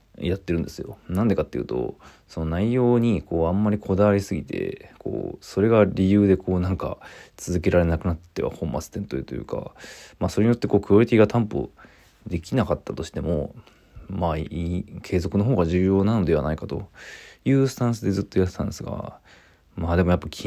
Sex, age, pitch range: male, 20-39, 80-100 Hz